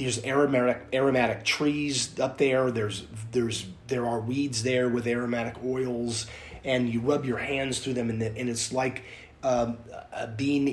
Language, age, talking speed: English, 30-49, 160 wpm